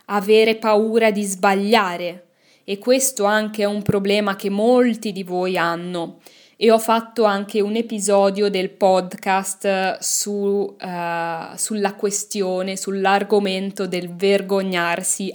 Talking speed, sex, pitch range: 115 wpm, female, 180-225 Hz